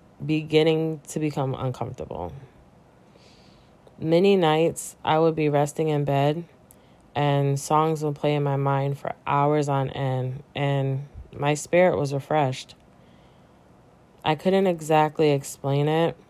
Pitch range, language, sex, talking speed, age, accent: 140-160 Hz, English, female, 120 wpm, 20-39, American